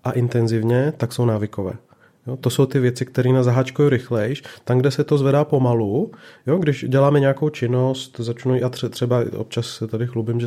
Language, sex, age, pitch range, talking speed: Czech, male, 30-49, 115-135 Hz, 190 wpm